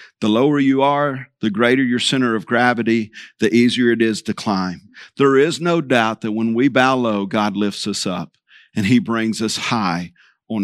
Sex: male